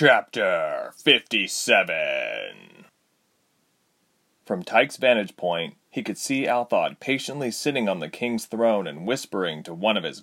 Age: 30-49